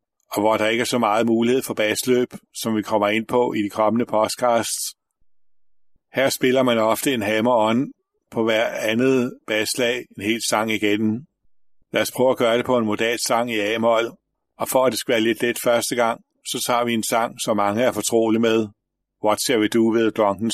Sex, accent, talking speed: male, native, 210 wpm